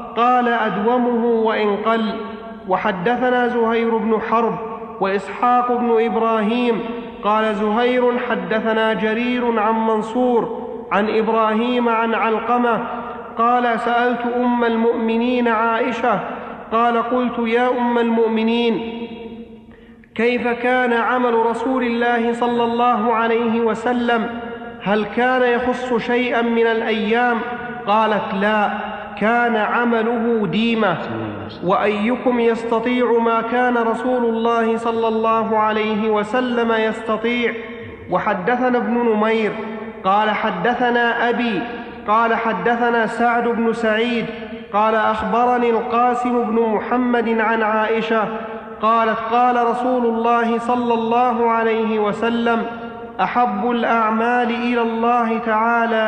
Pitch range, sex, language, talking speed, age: 220-240 Hz, male, Arabic, 100 wpm, 40-59